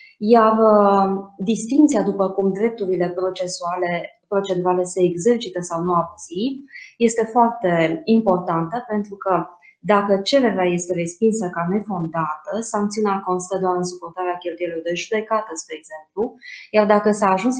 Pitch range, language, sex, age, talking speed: 180-225 Hz, Romanian, female, 20-39, 130 wpm